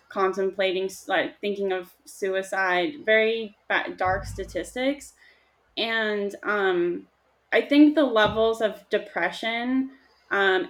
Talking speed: 95 wpm